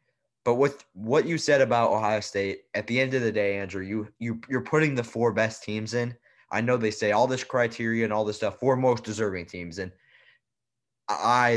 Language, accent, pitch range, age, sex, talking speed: English, American, 105-120 Hz, 20-39, male, 215 wpm